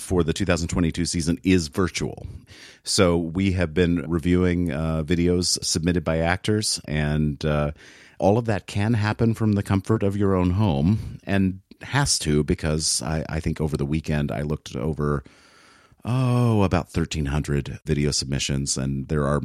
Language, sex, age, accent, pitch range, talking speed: English, male, 30-49, American, 75-90 Hz, 160 wpm